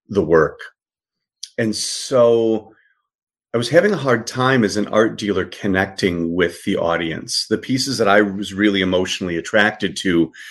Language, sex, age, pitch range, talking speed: English, male, 40-59, 95-120 Hz, 155 wpm